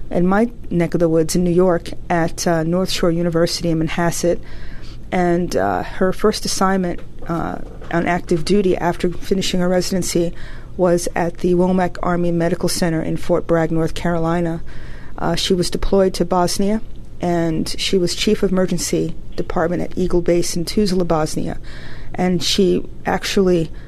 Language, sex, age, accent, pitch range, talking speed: English, female, 40-59, American, 170-195 Hz, 160 wpm